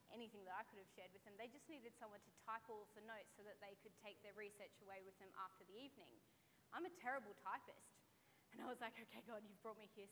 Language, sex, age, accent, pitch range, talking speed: English, female, 20-39, Australian, 205-275 Hz, 260 wpm